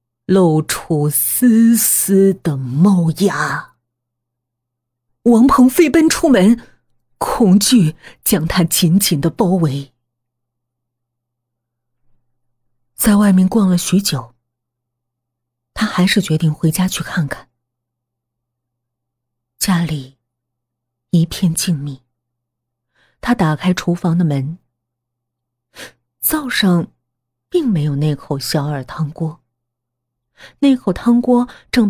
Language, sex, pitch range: Chinese, female, 120-185 Hz